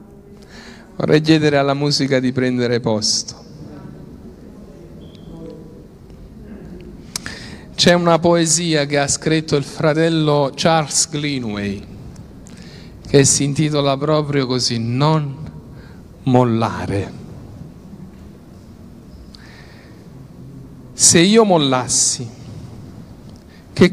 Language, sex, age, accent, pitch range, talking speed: Italian, male, 50-69, native, 130-215 Hz, 70 wpm